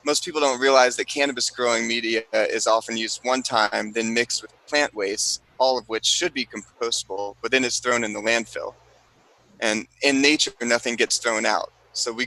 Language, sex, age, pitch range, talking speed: English, male, 30-49, 115-135 Hz, 195 wpm